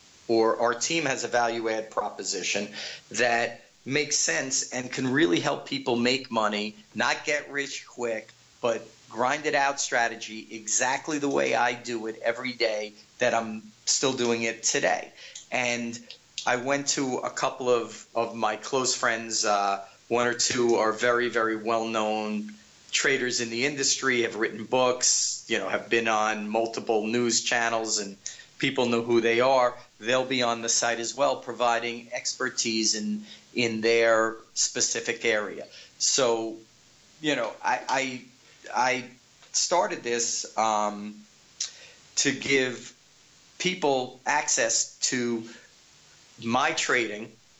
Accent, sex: American, male